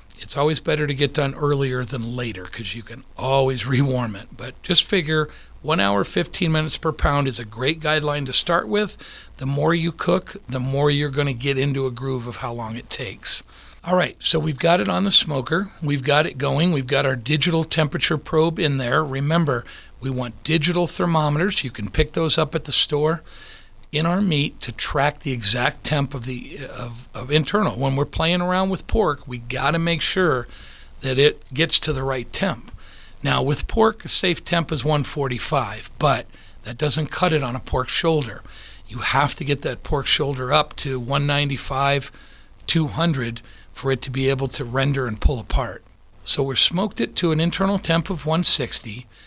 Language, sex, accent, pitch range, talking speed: English, male, American, 130-160 Hz, 195 wpm